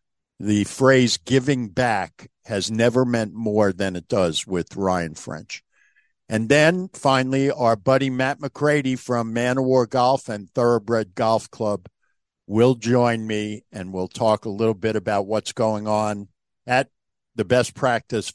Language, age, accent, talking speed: English, 50-69, American, 145 wpm